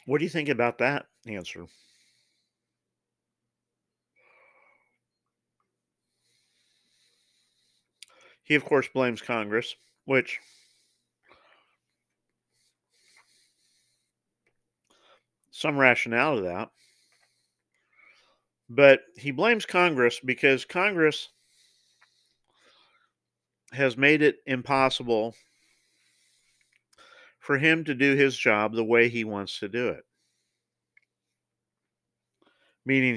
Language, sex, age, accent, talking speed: English, male, 50-69, American, 75 wpm